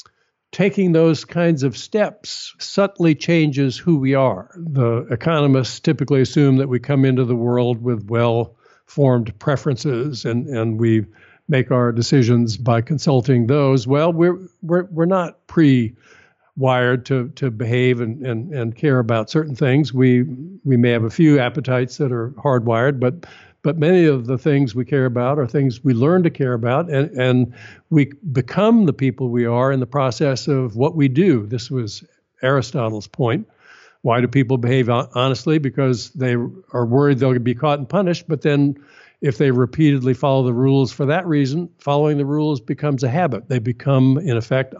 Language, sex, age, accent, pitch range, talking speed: English, male, 60-79, American, 125-150 Hz, 175 wpm